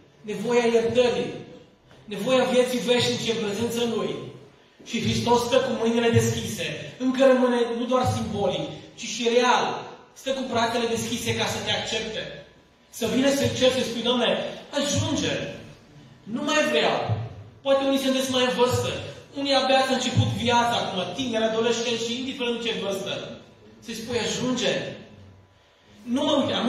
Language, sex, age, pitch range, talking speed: Romanian, male, 30-49, 170-250 Hz, 145 wpm